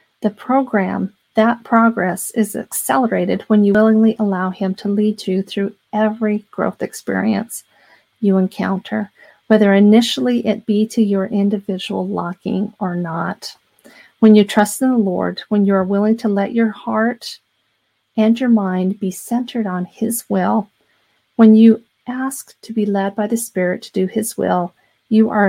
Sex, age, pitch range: female, 40-59, 195-220 Hz